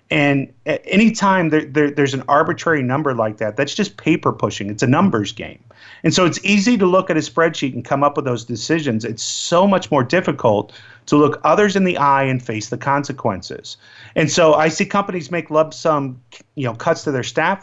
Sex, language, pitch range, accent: male, English, 130-180 Hz, American